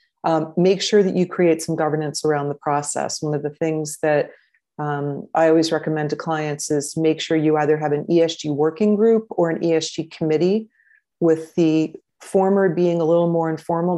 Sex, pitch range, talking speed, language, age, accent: female, 145-165 Hz, 190 wpm, English, 30-49, American